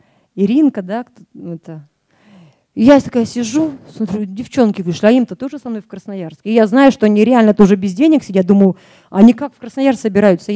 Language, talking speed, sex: Russian, 180 wpm, female